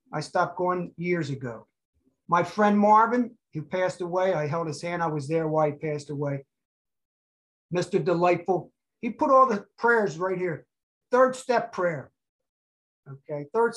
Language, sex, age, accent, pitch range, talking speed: English, male, 50-69, American, 155-195 Hz, 155 wpm